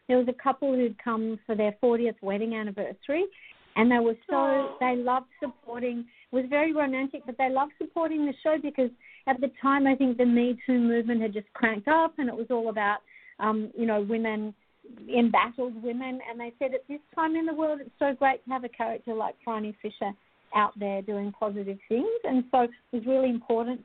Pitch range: 220-270 Hz